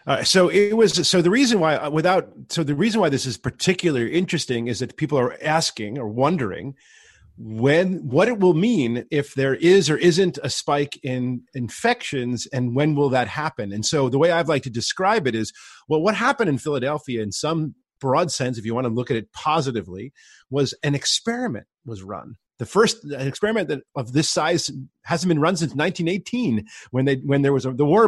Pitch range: 125-170 Hz